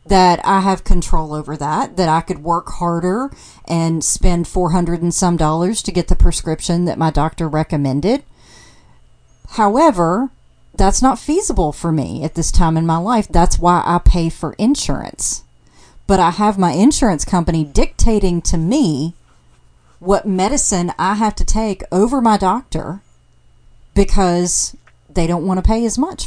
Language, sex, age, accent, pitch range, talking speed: English, female, 40-59, American, 155-210 Hz, 160 wpm